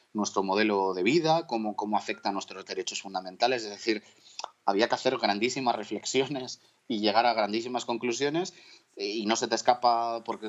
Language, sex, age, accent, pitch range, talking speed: Spanish, male, 30-49, Spanish, 105-125 Hz, 165 wpm